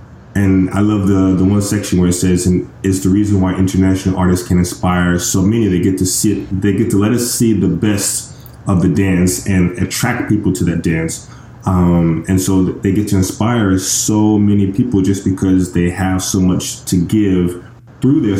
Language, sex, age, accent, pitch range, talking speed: English, male, 20-39, American, 95-110 Hz, 205 wpm